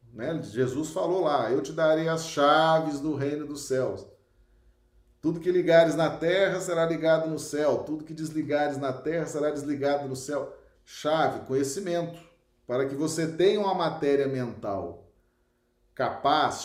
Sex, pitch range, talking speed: male, 140-185 Hz, 145 wpm